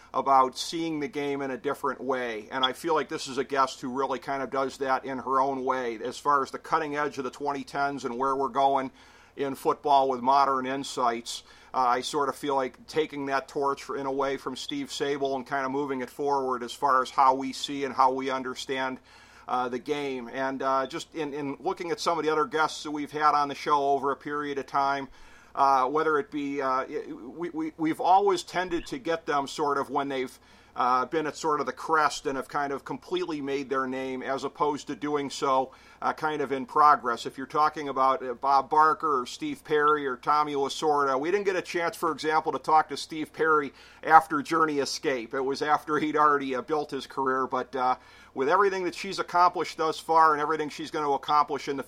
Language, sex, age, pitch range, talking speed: English, male, 50-69, 135-155 Hz, 225 wpm